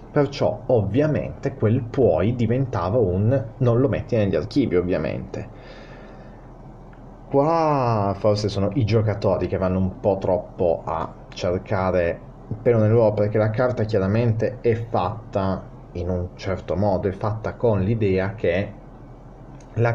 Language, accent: Italian, native